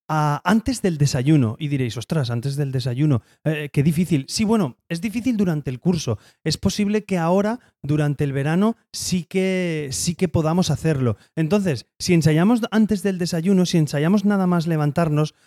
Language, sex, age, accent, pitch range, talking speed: Spanish, male, 30-49, Spanish, 145-185 Hz, 165 wpm